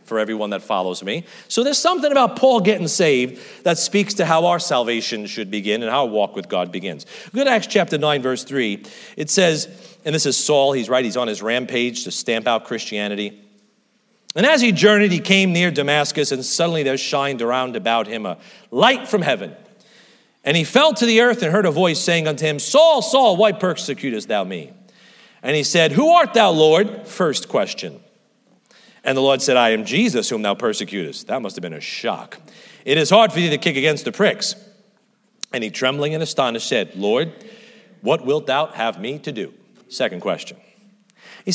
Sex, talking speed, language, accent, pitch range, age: male, 200 wpm, English, American, 135-225 Hz, 40-59